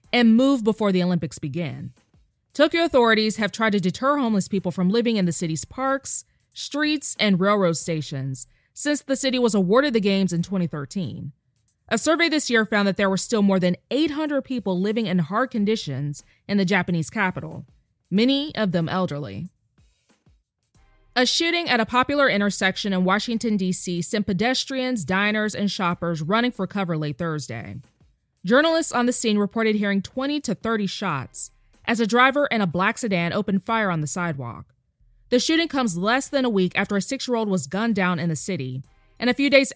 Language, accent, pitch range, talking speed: English, American, 175-240 Hz, 180 wpm